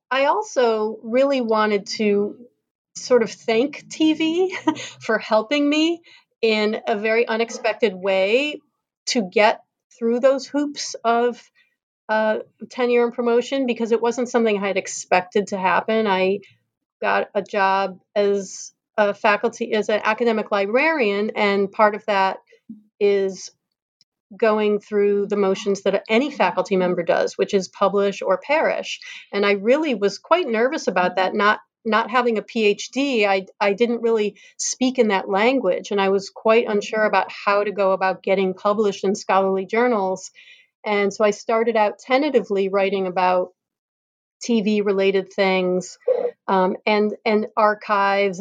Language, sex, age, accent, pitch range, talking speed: English, female, 40-59, American, 200-245 Hz, 145 wpm